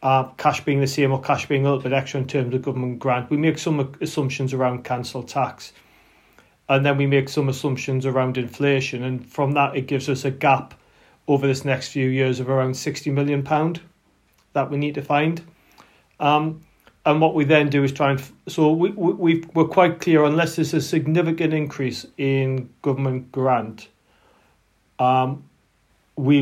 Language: English